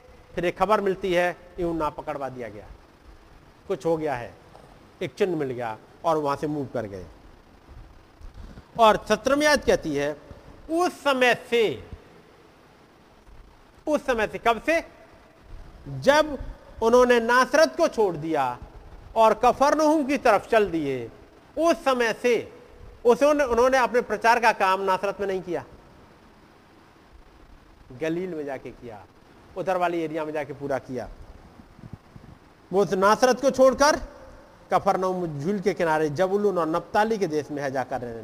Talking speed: 135 wpm